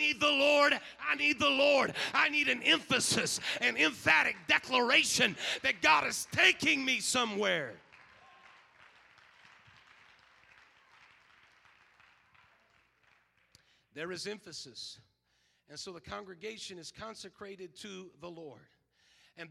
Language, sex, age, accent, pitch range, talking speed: English, male, 40-59, American, 185-245 Hz, 100 wpm